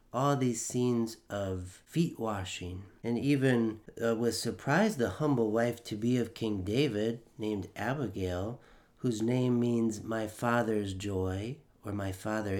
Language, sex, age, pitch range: English, male, 40-59, 105-125 Hz